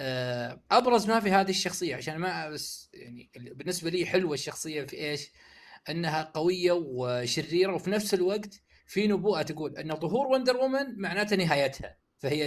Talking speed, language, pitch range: 150 wpm, Arabic, 140-195 Hz